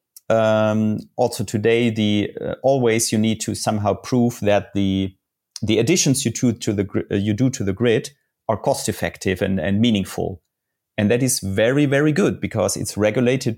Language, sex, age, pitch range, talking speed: English, male, 30-49, 105-125 Hz, 180 wpm